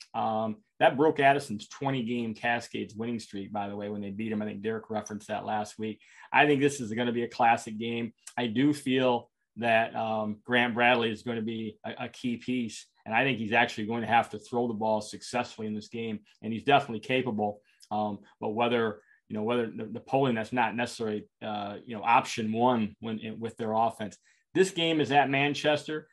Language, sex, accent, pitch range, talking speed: English, male, American, 110-130 Hz, 215 wpm